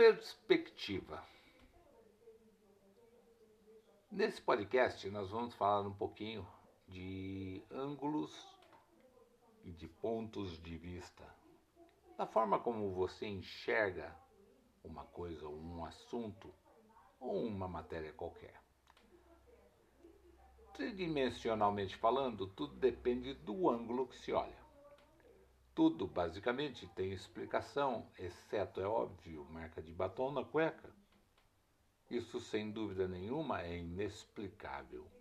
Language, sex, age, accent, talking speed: Portuguese, male, 60-79, Brazilian, 95 wpm